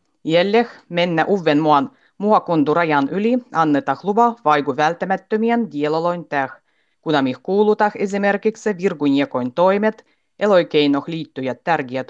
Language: Finnish